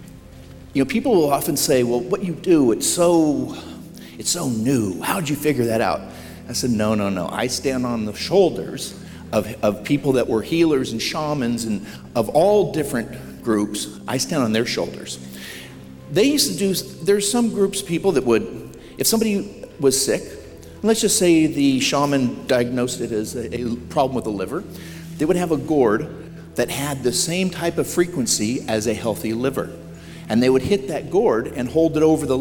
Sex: male